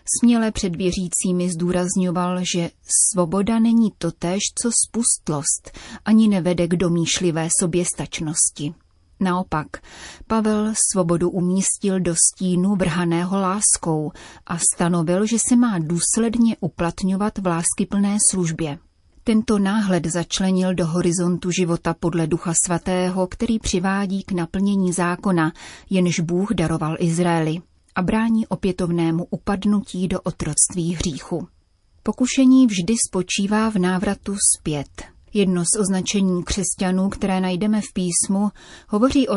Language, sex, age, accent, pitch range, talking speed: Czech, female, 30-49, native, 170-210 Hz, 115 wpm